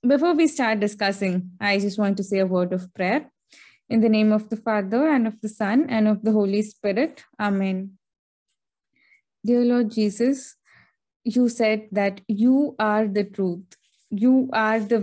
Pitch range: 200-235 Hz